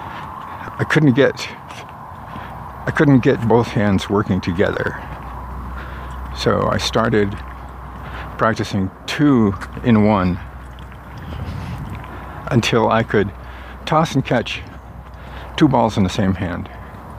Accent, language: American, English